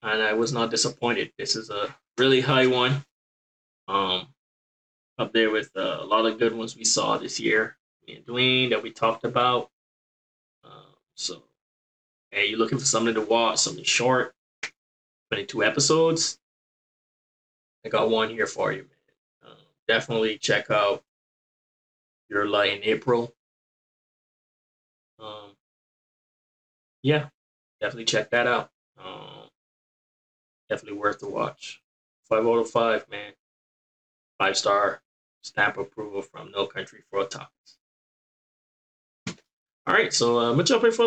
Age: 20-39